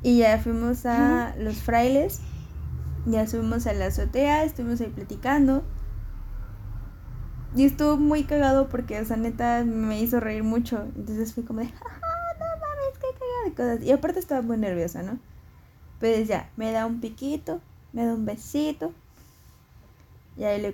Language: Spanish